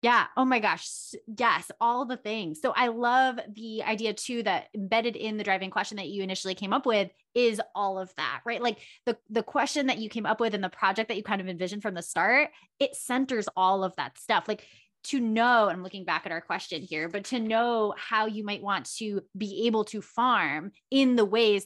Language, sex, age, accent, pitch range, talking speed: English, female, 20-39, American, 195-230 Hz, 225 wpm